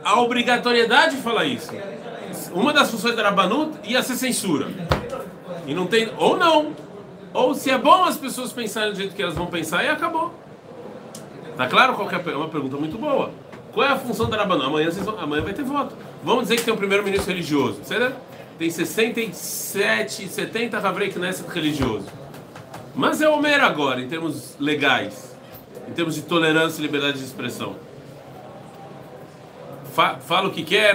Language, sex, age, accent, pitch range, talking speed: Portuguese, male, 40-59, Brazilian, 155-225 Hz, 175 wpm